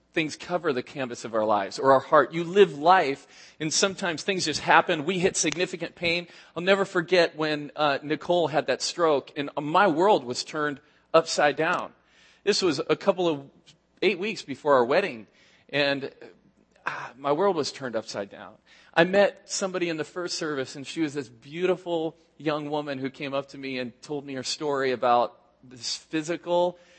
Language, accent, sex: English, American, male